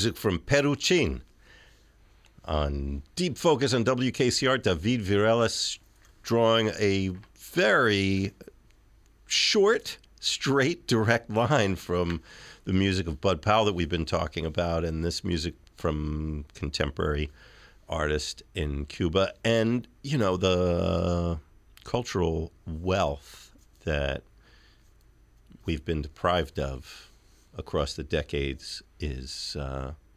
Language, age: English, 50-69